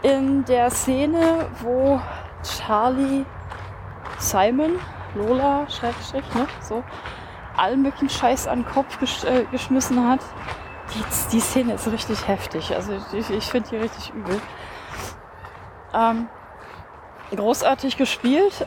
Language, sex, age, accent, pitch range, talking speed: German, female, 20-39, German, 215-270 Hz, 110 wpm